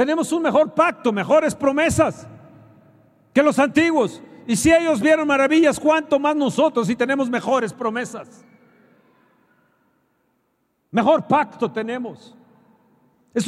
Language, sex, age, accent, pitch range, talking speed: Spanish, male, 50-69, Mexican, 220-260 Hz, 110 wpm